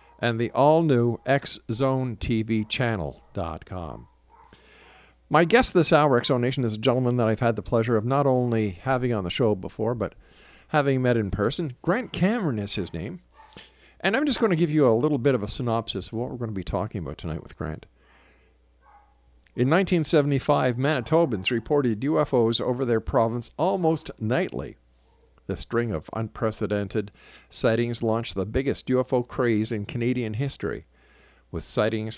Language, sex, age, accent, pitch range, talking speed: English, male, 50-69, American, 105-140 Hz, 160 wpm